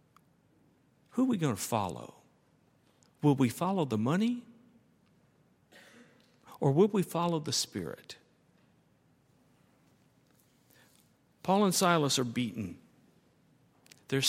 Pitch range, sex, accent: 120-175 Hz, male, American